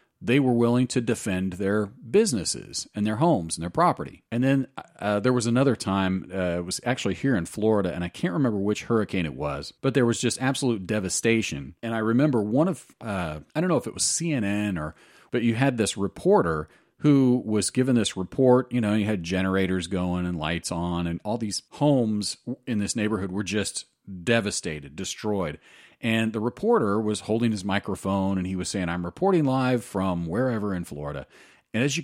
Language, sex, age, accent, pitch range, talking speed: English, male, 40-59, American, 95-130 Hz, 195 wpm